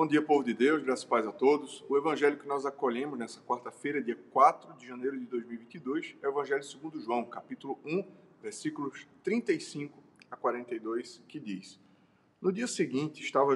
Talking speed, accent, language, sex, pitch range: 175 wpm, Brazilian, Portuguese, male, 130-200 Hz